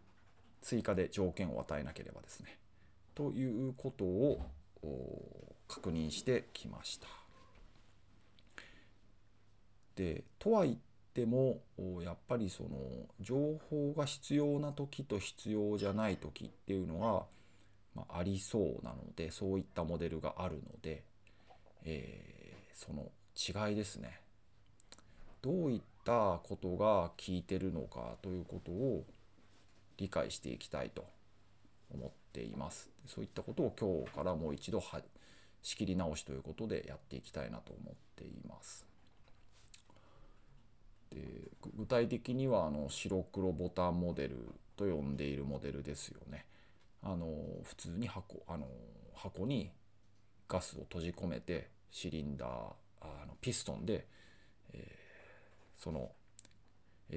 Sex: male